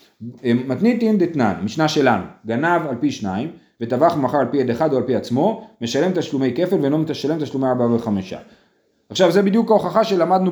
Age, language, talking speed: 40-59, Hebrew, 175 wpm